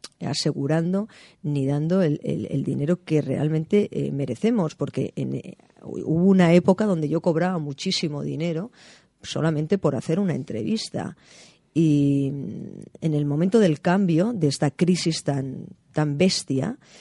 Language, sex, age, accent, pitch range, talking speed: Spanish, female, 40-59, Spanish, 145-180 Hz, 130 wpm